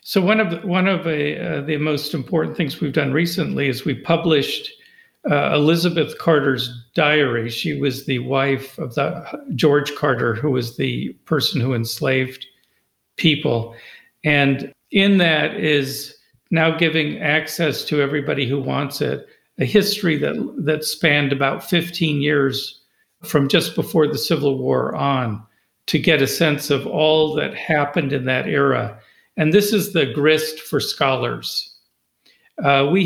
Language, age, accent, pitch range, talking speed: English, 50-69, American, 140-165 Hz, 150 wpm